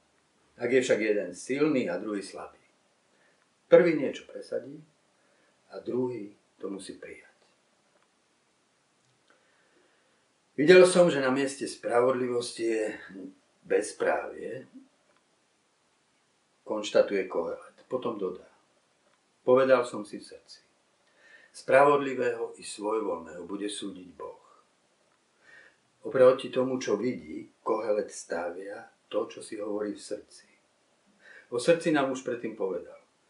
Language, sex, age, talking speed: Slovak, male, 50-69, 105 wpm